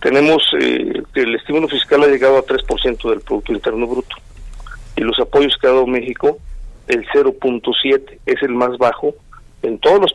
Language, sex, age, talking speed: Spanish, male, 50-69, 175 wpm